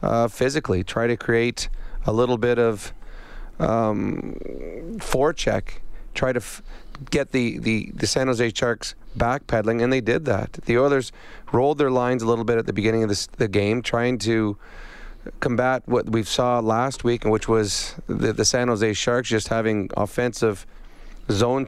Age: 30-49